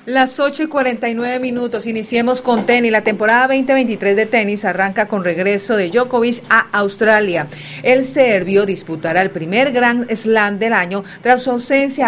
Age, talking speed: 50-69, 160 wpm